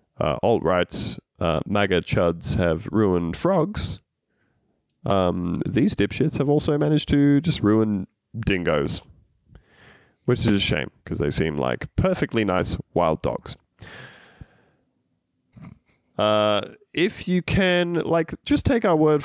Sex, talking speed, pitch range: male, 120 wpm, 90-130 Hz